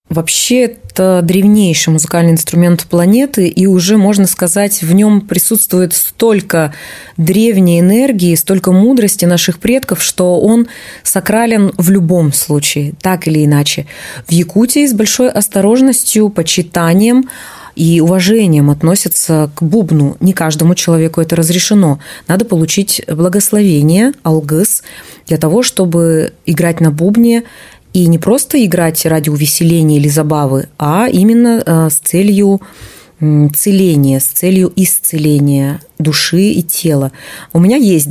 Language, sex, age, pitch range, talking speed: Russian, female, 20-39, 160-200 Hz, 120 wpm